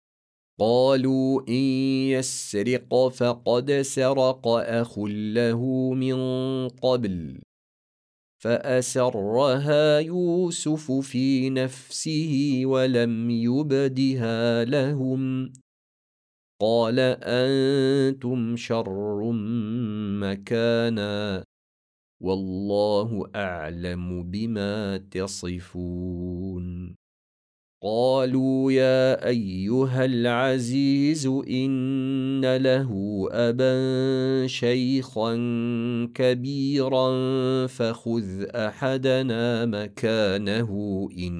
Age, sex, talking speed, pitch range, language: 40-59, male, 50 wpm, 105-130 Hz, Arabic